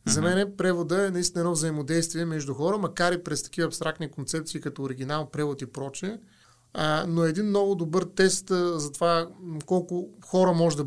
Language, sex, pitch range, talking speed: Bulgarian, male, 145-180 Hz, 190 wpm